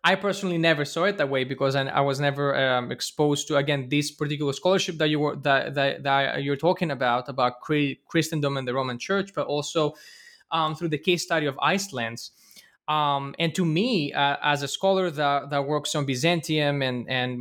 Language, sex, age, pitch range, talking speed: English, male, 20-39, 140-170 Hz, 200 wpm